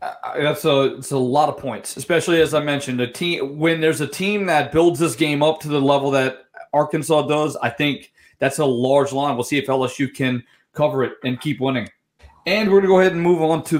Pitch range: 135-165 Hz